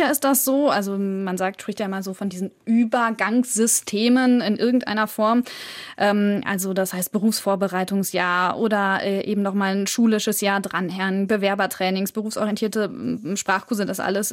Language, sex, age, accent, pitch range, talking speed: German, female, 20-39, German, 195-230 Hz, 140 wpm